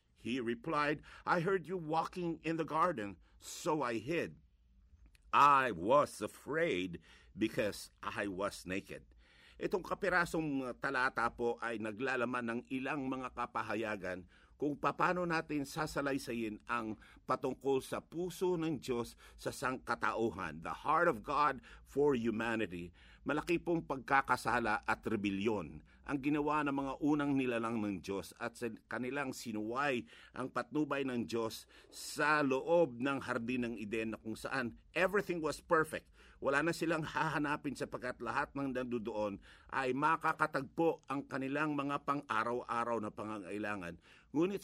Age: 50-69